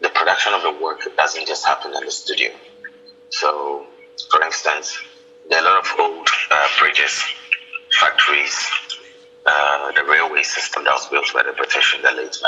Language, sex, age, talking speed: English, male, 30-49, 175 wpm